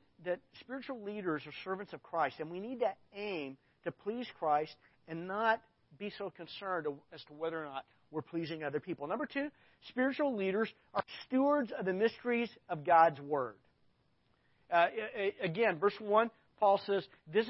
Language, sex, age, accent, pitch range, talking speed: English, male, 50-69, American, 170-230 Hz, 165 wpm